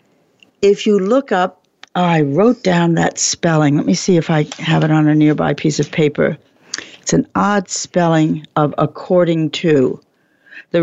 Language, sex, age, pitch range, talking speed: English, female, 60-79, 155-195 Hz, 170 wpm